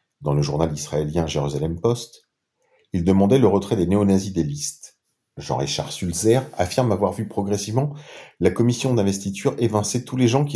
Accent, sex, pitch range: French, male, 80-105 Hz